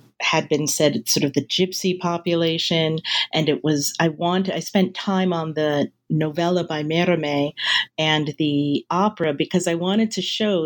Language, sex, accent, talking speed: English, female, American, 170 wpm